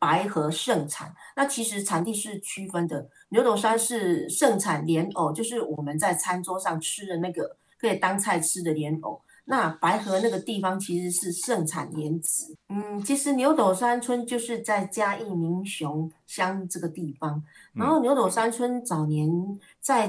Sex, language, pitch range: female, Chinese, 170-230 Hz